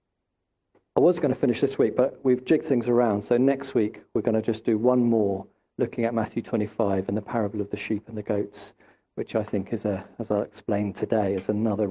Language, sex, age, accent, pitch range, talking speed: English, male, 40-59, British, 105-140 Hz, 230 wpm